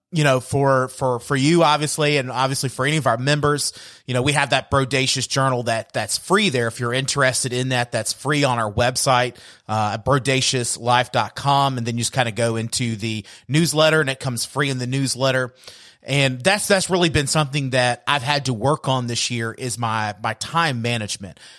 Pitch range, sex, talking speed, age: 120-145 Hz, male, 205 wpm, 30-49